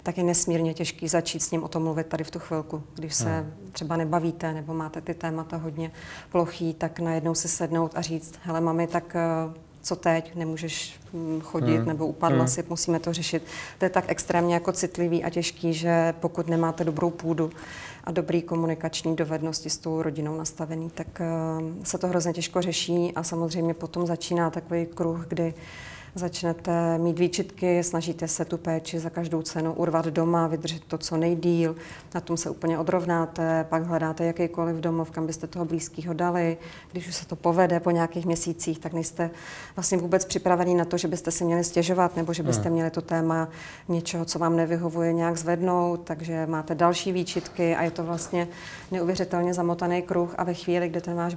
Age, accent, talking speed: 30-49, native, 180 wpm